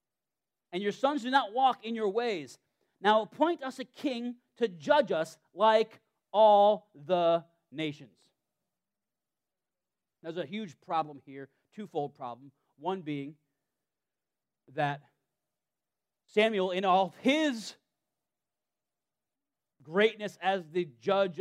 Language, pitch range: English, 145-225 Hz